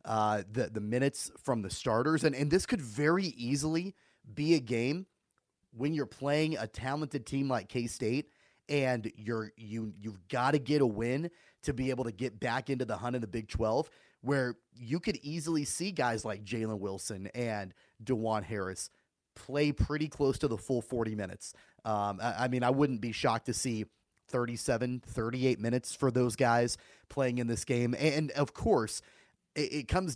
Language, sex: English, male